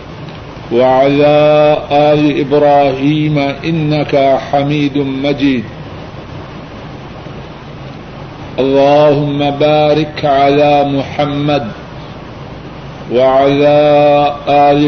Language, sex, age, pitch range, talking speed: Urdu, male, 50-69, 140-150 Hz, 50 wpm